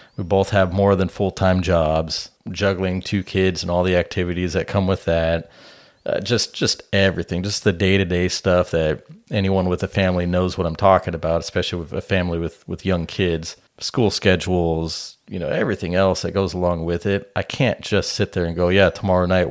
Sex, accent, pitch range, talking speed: male, American, 90-100 Hz, 200 wpm